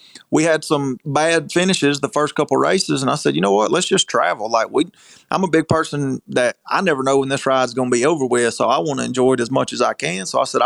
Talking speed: 280 wpm